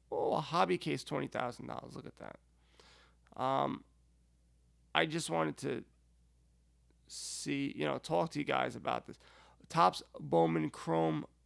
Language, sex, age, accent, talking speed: English, male, 30-49, American, 130 wpm